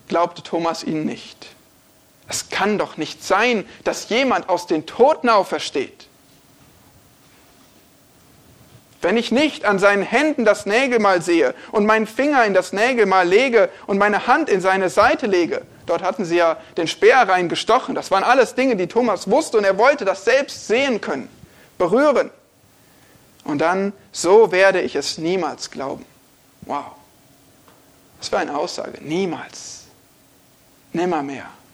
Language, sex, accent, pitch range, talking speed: German, male, German, 185-255 Hz, 145 wpm